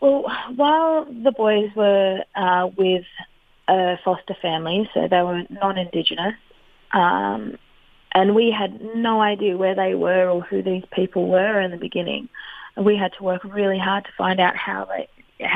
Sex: female